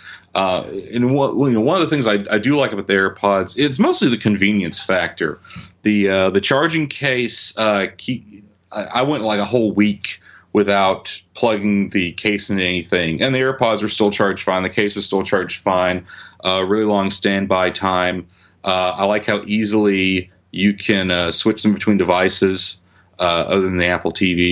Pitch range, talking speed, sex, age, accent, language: 95-110 Hz, 185 wpm, male, 30-49, American, English